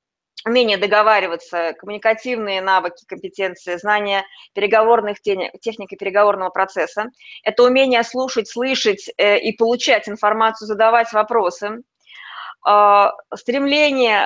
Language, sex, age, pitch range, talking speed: Russian, female, 20-39, 200-245 Hz, 85 wpm